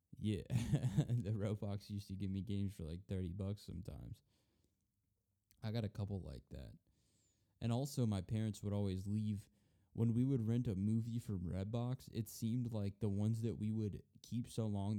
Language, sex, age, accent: English, male, 10-29, American